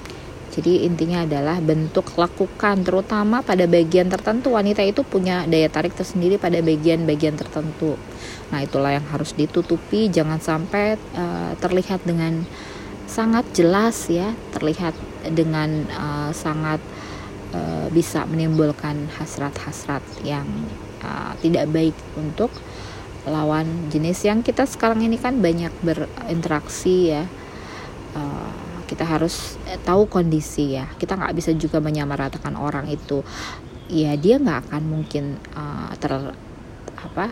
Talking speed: 120 wpm